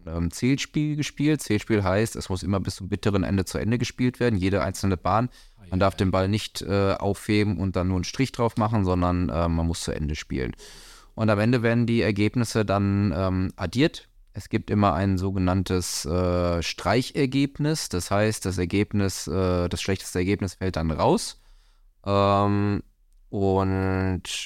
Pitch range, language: 90-105 Hz, German